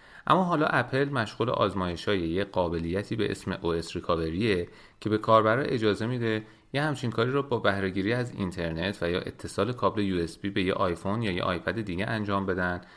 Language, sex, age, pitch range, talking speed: Persian, male, 30-49, 90-110 Hz, 175 wpm